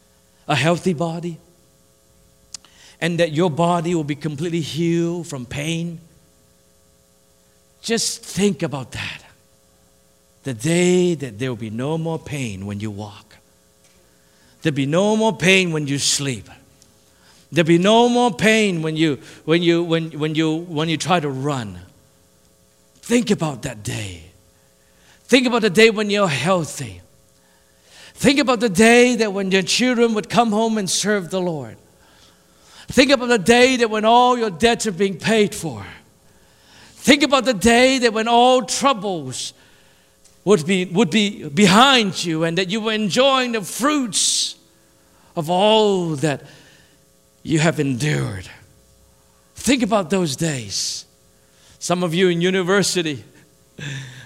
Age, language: 50-69, English